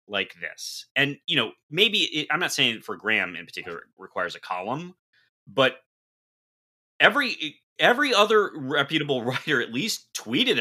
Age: 30-49